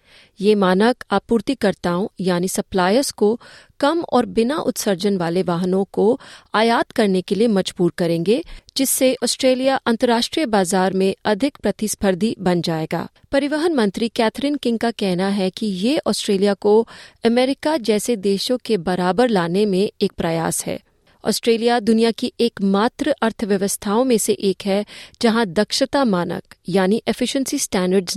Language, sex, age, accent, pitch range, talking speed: Hindi, female, 30-49, native, 190-235 Hz, 140 wpm